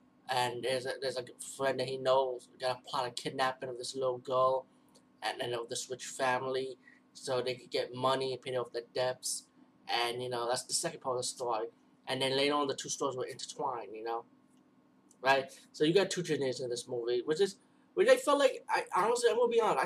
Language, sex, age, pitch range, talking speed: English, male, 20-39, 125-155 Hz, 235 wpm